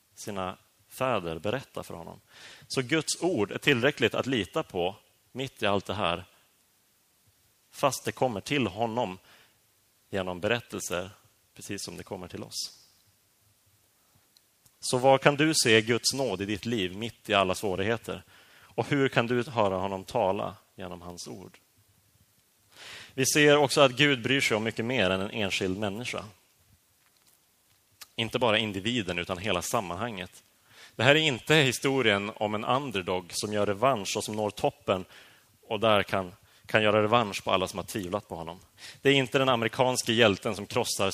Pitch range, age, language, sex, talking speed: 95-125 Hz, 30-49, Swedish, male, 160 wpm